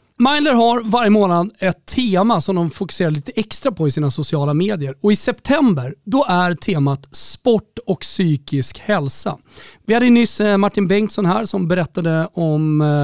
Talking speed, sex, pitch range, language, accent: 160 wpm, male, 155-215 Hz, Swedish, native